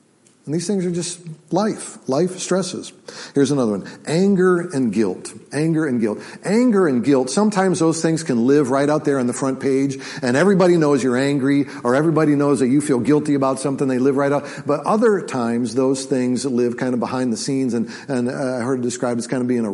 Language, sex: English, male